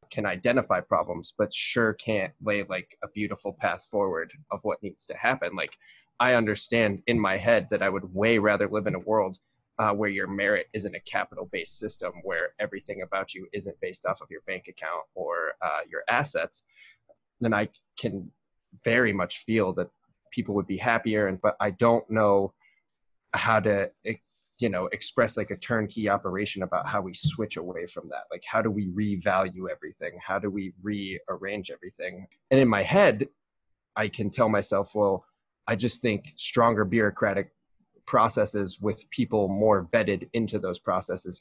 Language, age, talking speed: English, 20-39, 175 wpm